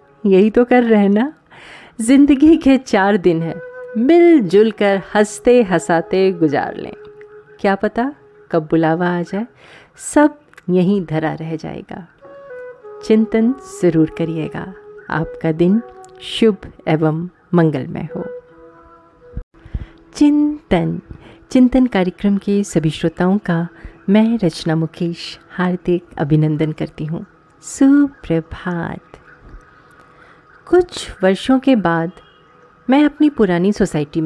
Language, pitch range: Hindi, 170-275 Hz